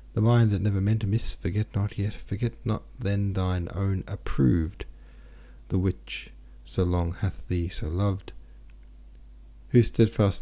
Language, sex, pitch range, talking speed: English, male, 85-110 Hz, 150 wpm